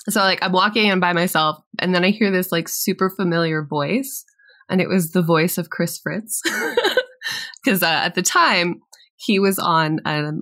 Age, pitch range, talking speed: 20-39, 160-220 Hz, 185 wpm